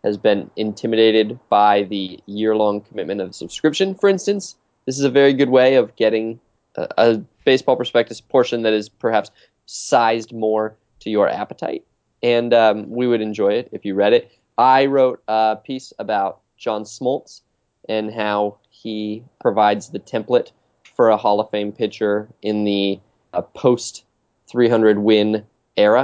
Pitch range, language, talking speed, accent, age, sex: 100-125 Hz, English, 155 wpm, American, 20-39, male